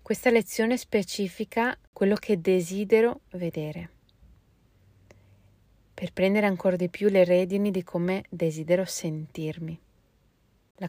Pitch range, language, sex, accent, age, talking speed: 165-190 Hz, Italian, female, native, 30-49, 105 wpm